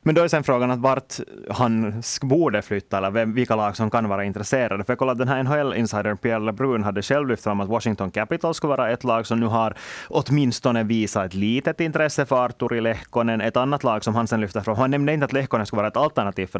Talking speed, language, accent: 240 wpm, Swedish, Finnish